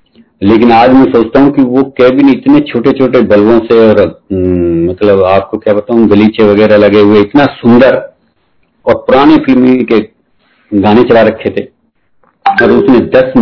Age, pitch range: 50-69, 100-120 Hz